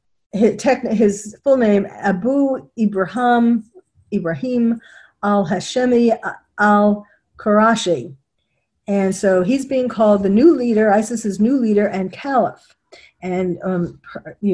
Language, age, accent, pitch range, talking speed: English, 50-69, American, 170-220 Hz, 105 wpm